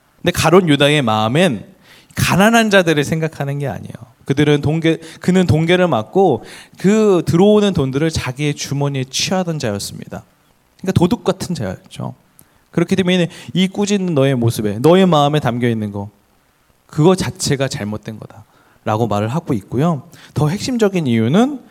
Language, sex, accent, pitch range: Korean, male, native, 120-190 Hz